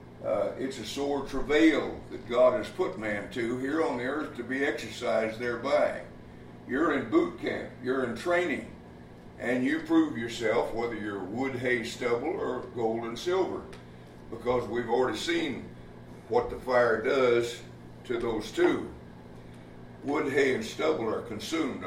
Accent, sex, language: American, male, English